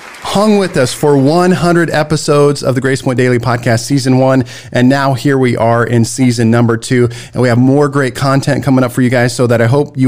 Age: 40-59